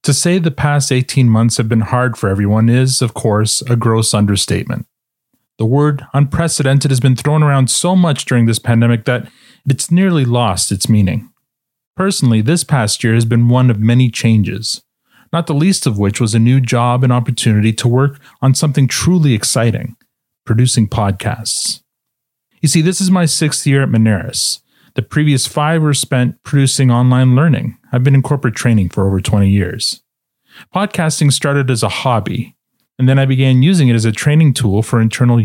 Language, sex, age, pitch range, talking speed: English, male, 30-49, 115-145 Hz, 180 wpm